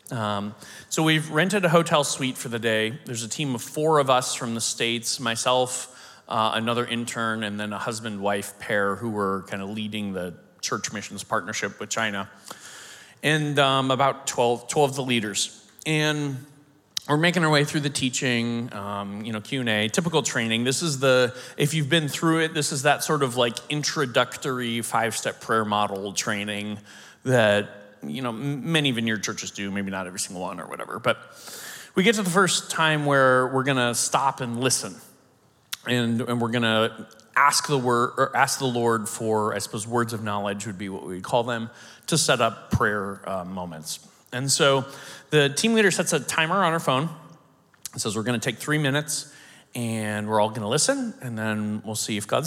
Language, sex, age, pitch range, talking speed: English, male, 30-49, 110-145 Hz, 190 wpm